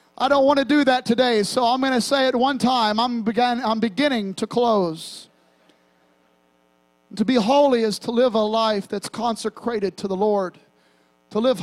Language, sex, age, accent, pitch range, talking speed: English, male, 40-59, American, 170-240 Hz, 185 wpm